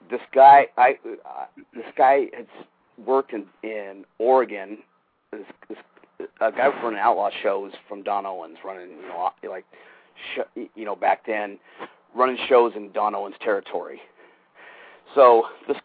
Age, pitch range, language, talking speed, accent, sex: 40-59, 105-130 Hz, English, 145 wpm, American, male